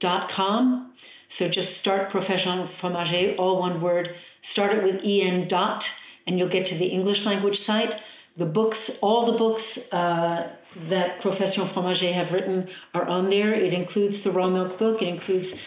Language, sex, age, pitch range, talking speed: English, female, 60-79, 170-200 Hz, 165 wpm